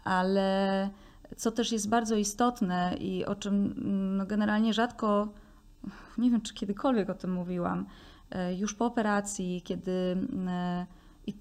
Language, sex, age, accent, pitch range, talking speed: Polish, female, 20-39, native, 180-210 Hz, 120 wpm